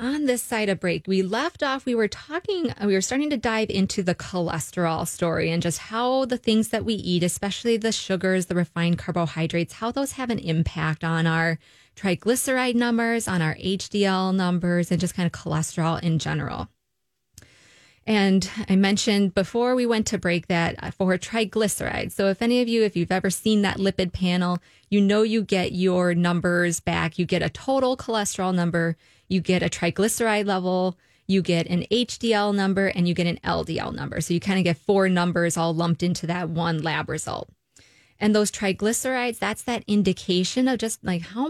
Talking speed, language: 190 wpm, English